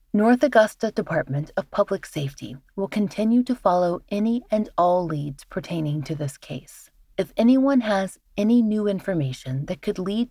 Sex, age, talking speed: female, 30-49, 155 wpm